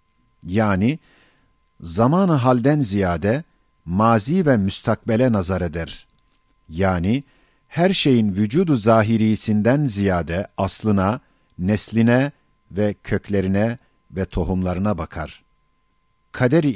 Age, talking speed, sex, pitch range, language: 50-69, 80 wpm, male, 95-130 Hz, Turkish